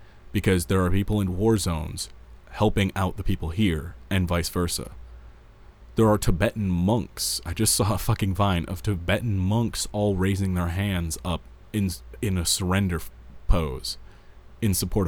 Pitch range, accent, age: 80-100 Hz, American, 30-49